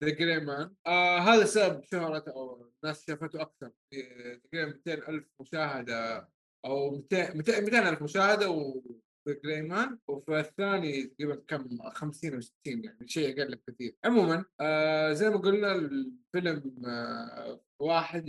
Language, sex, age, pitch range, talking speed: Arabic, male, 20-39, 140-185 Hz, 135 wpm